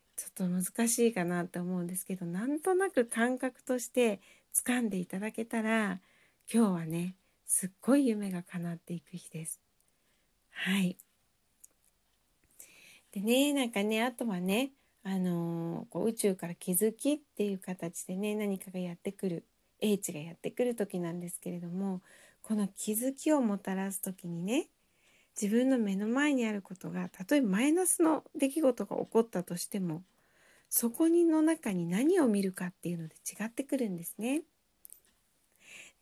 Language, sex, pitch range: Japanese, female, 180-245 Hz